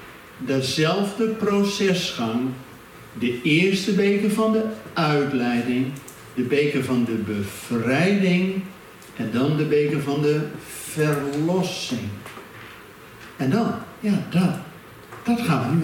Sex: male